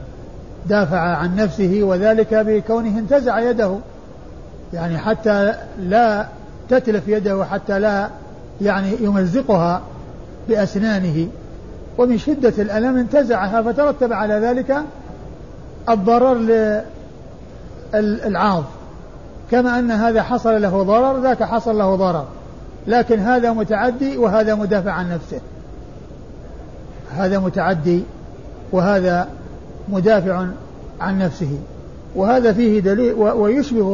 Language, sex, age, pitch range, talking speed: Arabic, male, 50-69, 185-220 Hz, 95 wpm